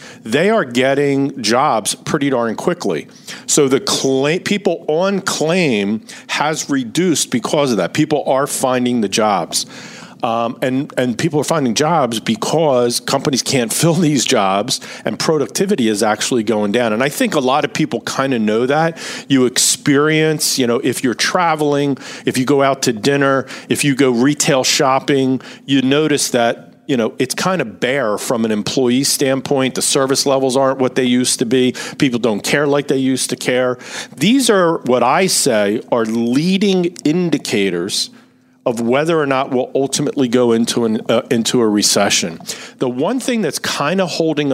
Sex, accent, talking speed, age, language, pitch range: male, American, 175 wpm, 50-69, English, 125-155 Hz